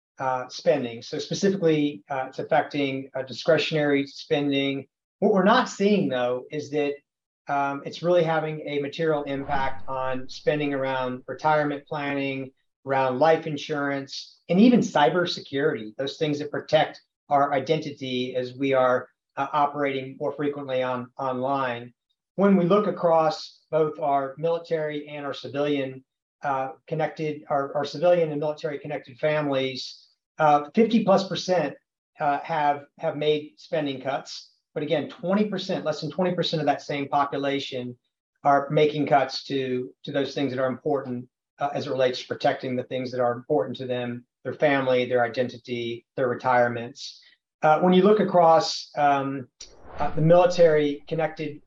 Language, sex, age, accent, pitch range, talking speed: English, male, 40-59, American, 135-160 Hz, 145 wpm